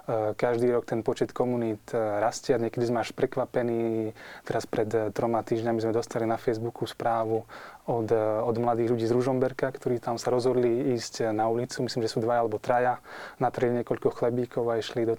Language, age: Slovak, 20-39